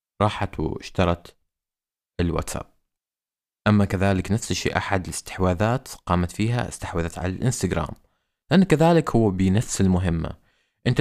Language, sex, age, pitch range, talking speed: Arabic, male, 20-39, 85-105 Hz, 110 wpm